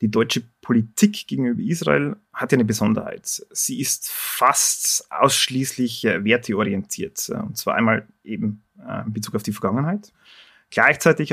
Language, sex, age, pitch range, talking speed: German, male, 30-49, 115-160 Hz, 125 wpm